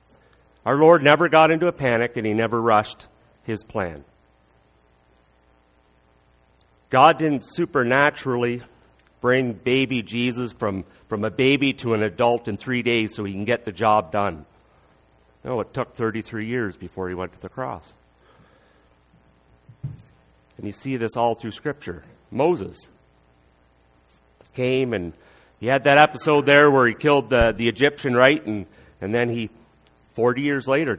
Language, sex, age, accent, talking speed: English, male, 40-59, American, 145 wpm